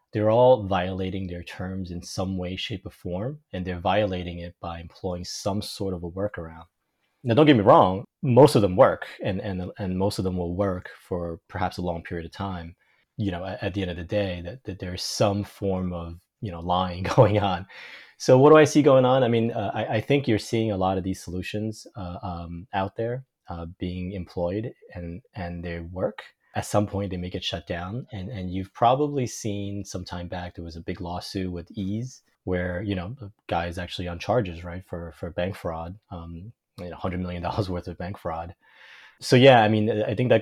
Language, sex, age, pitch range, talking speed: English, male, 30-49, 85-105 Hz, 225 wpm